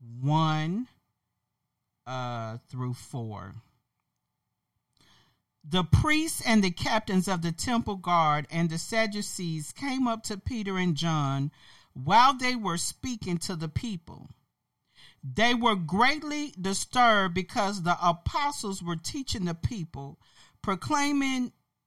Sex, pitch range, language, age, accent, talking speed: male, 165-240 Hz, English, 40-59, American, 115 wpm